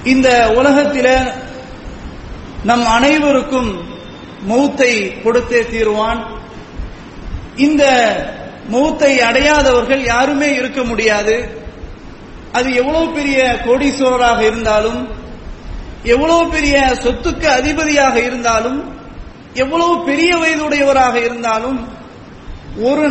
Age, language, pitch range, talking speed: 30-49, English, 245-310 Hz, 75 wpm